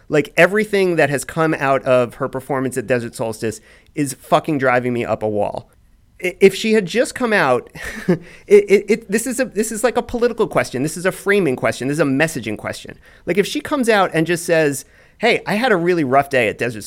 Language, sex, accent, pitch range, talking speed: English, male, American, 135-190 Hz, 230 wpm